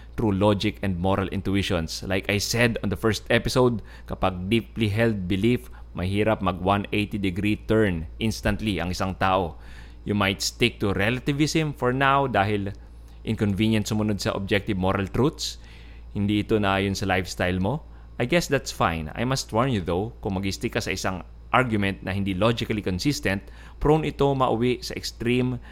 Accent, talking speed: Filipino, 160 wpm